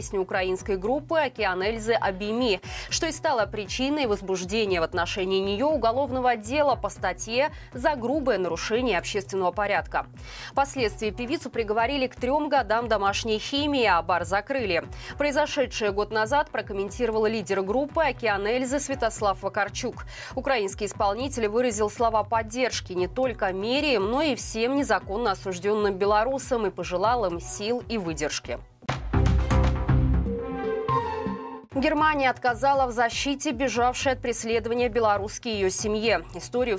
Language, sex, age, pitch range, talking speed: Russian, female, 20-39, 205-265 Hz, 115 wpm